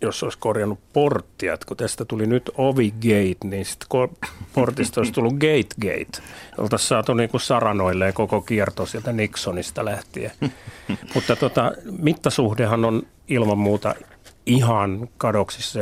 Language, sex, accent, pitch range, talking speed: Finnish, male, native, 100-135 Hz, 120 wpm